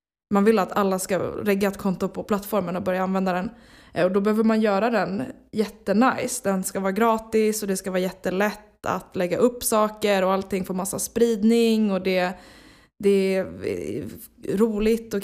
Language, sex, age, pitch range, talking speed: Swedish, female, 20-39, 185-220 Hz, 175 wpm